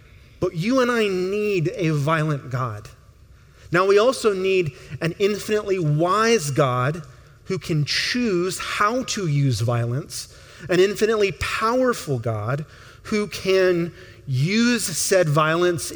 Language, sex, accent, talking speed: English, male, American, 120 wpm